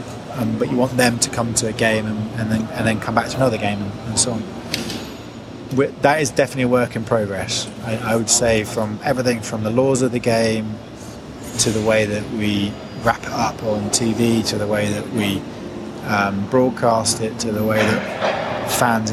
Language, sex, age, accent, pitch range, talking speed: English, male, 20-39, British, 110-130 Hz, 210 wpm